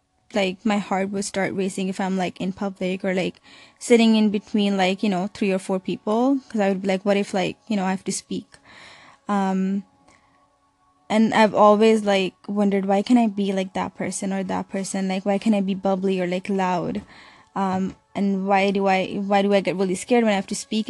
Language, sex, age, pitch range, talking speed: English, female, 10-29, 190-215 Hz, 225 wpm